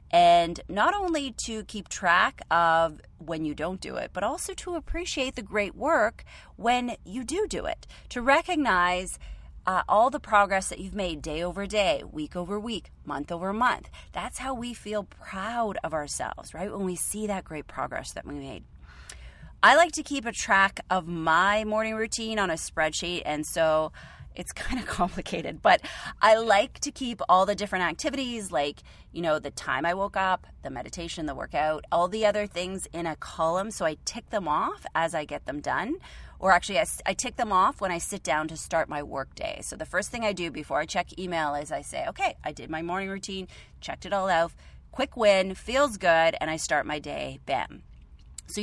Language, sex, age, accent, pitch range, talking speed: English, female, 30-49, American, 160-225 Hz, 205 wpm